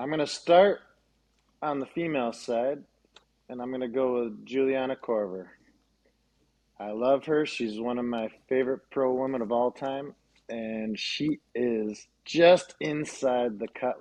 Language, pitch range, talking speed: English, 115-135 Hz, 155 wpm